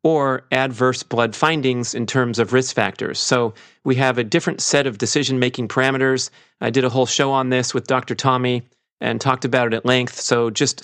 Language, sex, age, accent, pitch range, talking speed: English, male, 40-59, American, 115-130 Hz, 200 wpm